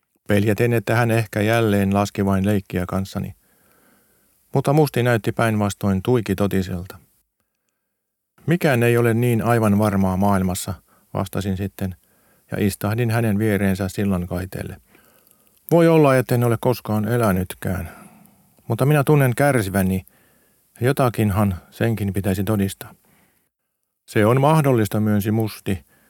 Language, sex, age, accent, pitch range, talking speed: Finnish, male, 50-69, native, 100-120 Hz, 115 wpm